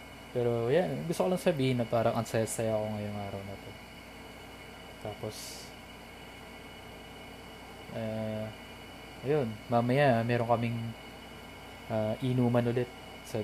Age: 20-39